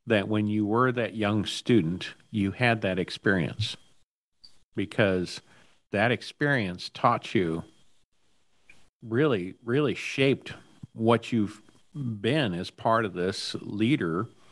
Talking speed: 110 wpm